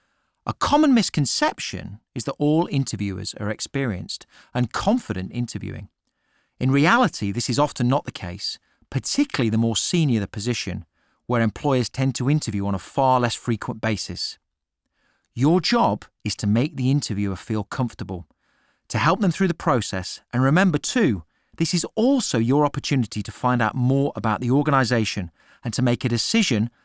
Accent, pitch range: British, 105-145 Hz